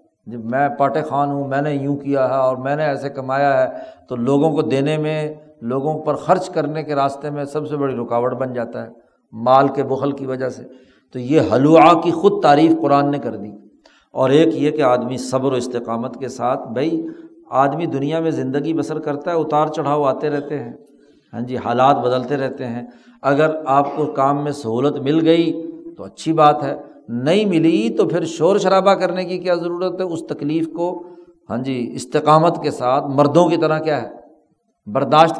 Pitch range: 135-170 Hz